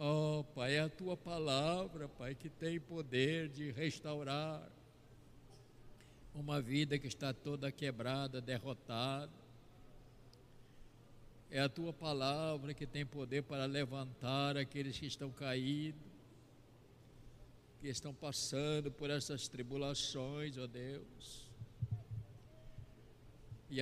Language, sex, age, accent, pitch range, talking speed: Portuguese, male, 60-79, Brazilian, 125-150 Hz, 105 wpm